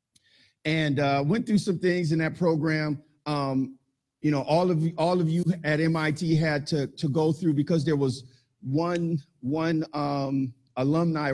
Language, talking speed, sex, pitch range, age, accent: English, 165 wpm, male, 145-185 Hz, 50-69, American